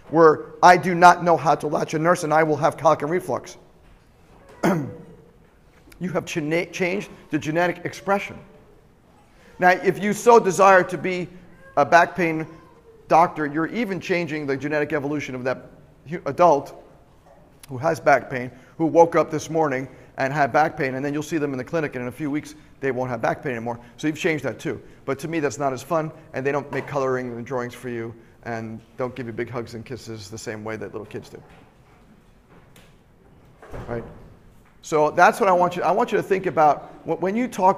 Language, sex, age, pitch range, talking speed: English, male, 40-59, 130-170 Hz, 205 wpm